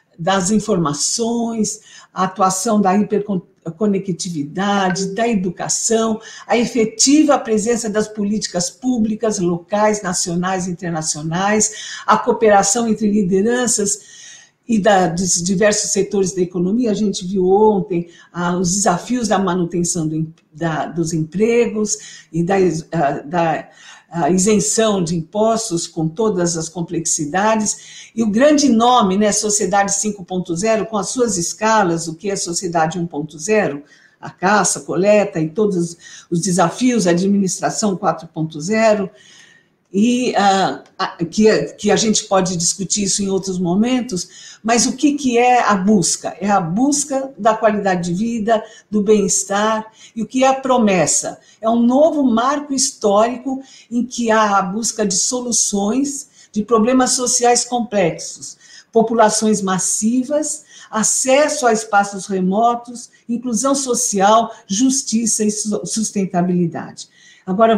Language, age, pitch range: Portuguese, 60-79, 185-225 Hz